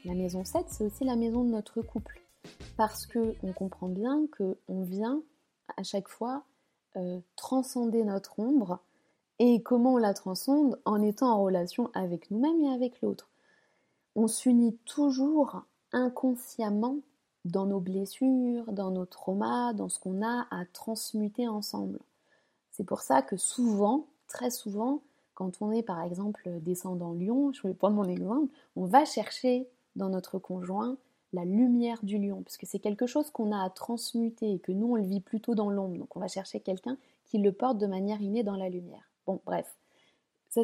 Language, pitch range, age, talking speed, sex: French, 195-250 Hz, 20-39, 175 wpm, female